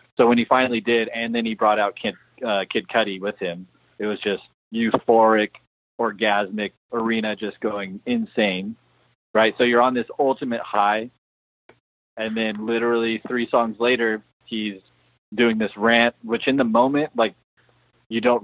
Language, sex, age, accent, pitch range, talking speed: English, male, 30-49, American, 100-115 Hz, 160 wpm